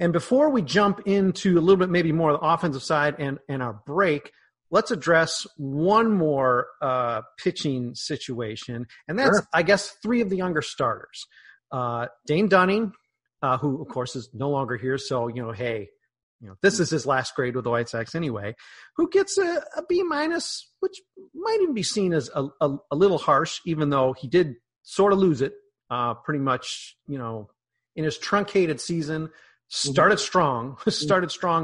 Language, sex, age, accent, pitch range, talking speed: English, male, 40-59, American, 130-185 Hz, 185 wpm